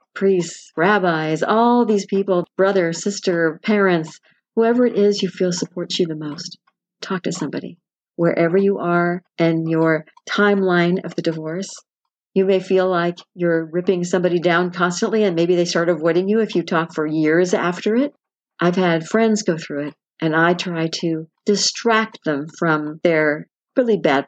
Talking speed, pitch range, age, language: 165 wpm, 160-195 Hz, 50-69, English